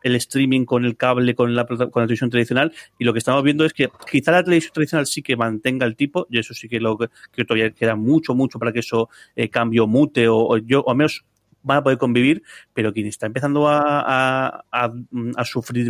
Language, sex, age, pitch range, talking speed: Spanish, male, 30-49, 115-130 Hz, 230 wpm